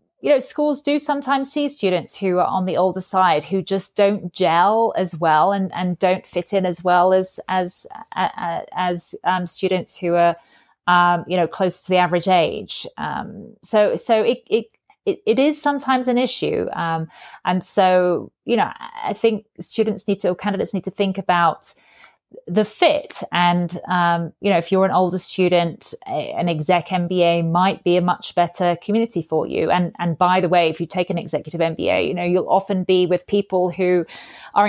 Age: 30-49